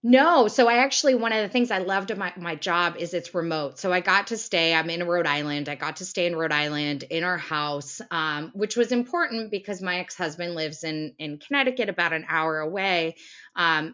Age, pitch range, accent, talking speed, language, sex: 20-39, 150-200 Hz, American, 225 wpm, English, female